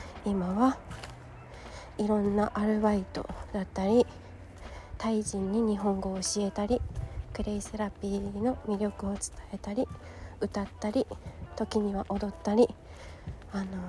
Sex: female